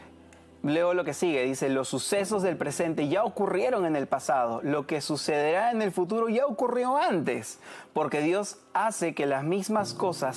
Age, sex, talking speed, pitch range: 30-49, male, 175 wpm, 140-195 Hz